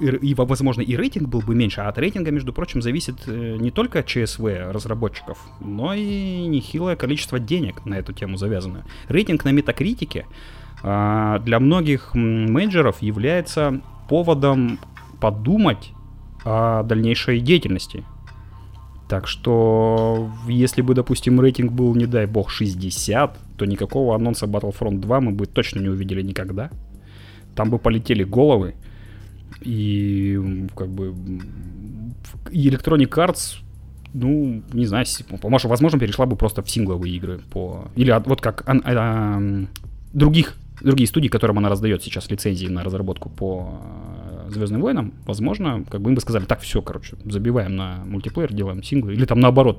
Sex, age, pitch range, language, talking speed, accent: male, 30-49, 100-130 Hz, Russian, 140 wpm, native